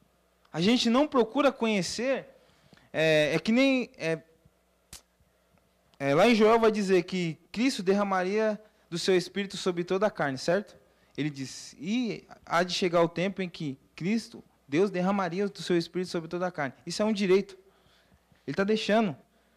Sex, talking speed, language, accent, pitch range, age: male, 165 wpm, Portuguese, Brazilian, 165-220 Hz, 20-39